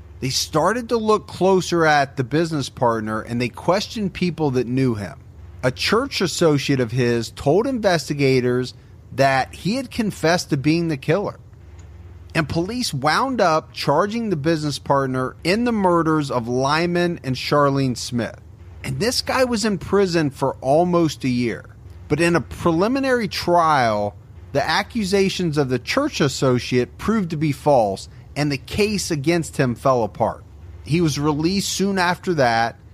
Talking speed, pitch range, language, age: 155 wpm, 120-180 Hz, English, 40-59